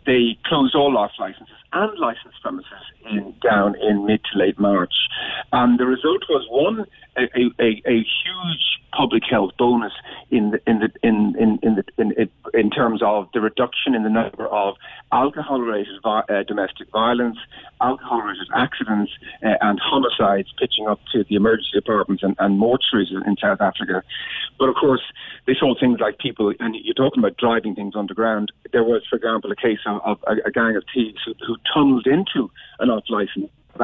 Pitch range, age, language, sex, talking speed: 105-135 Hz, 50-69, English, male, 185 wpm